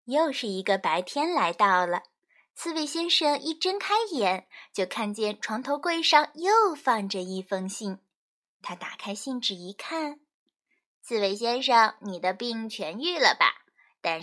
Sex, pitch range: female, 195-300 Hz